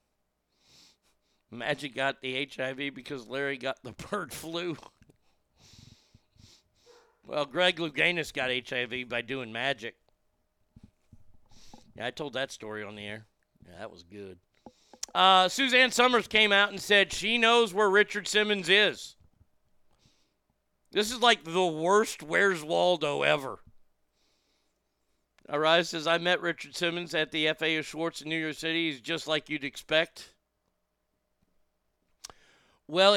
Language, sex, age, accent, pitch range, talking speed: English, male, 50-69, American, 135-185 Hz, 130 wpm